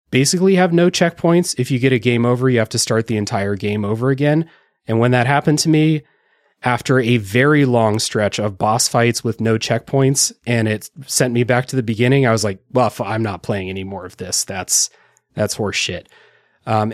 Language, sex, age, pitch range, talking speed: English, male, 30-49, 110-140 Hz, 210 wpm